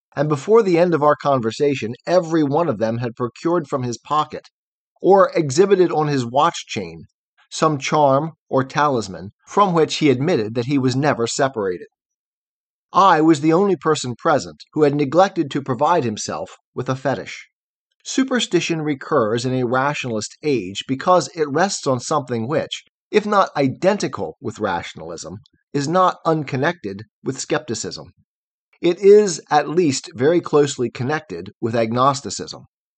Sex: male